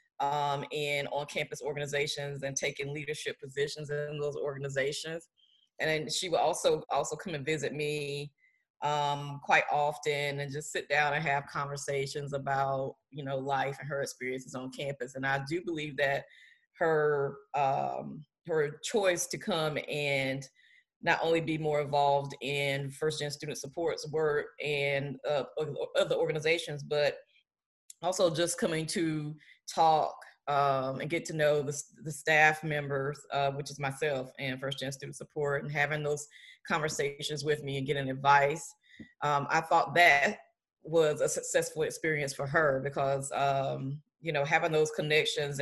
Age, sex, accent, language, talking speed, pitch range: 20-39, female, American, English, 150 wpm, 140-155 Hz